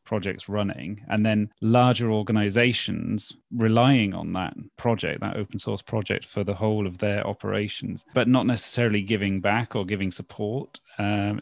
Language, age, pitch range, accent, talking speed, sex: English, 30-49, 100-115 Hz, British, 150 wpm, male